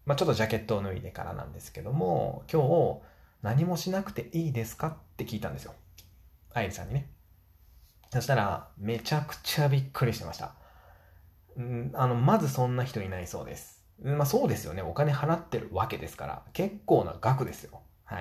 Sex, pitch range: male, 95-145 Hz